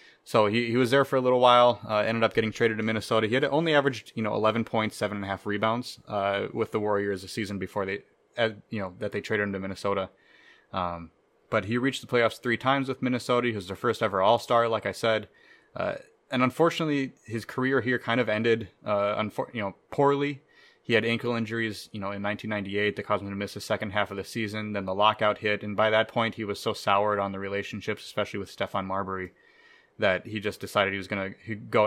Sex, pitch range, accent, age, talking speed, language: male, 95-115 Hz, American, 20-39, 225 wpm, English